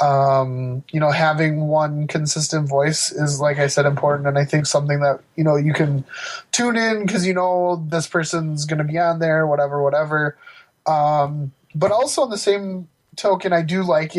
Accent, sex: American, male